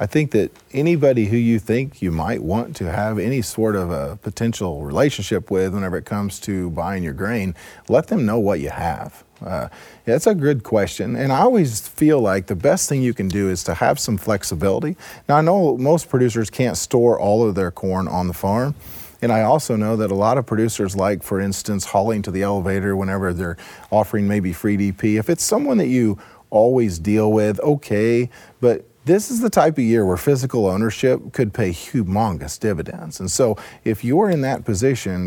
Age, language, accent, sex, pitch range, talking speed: 40-59, English, American, male, 100-125 Hz, 200 wpm